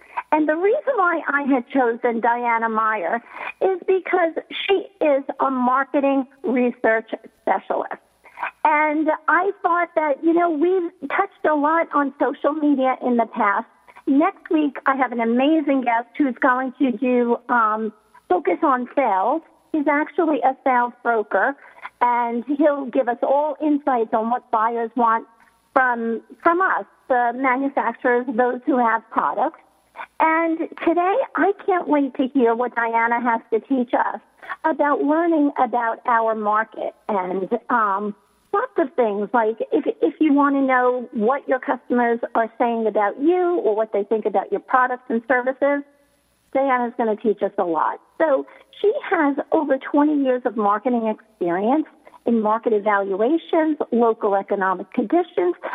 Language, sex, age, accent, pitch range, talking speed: English, female, 50-69, American, 230-305 Hz, 150 wpm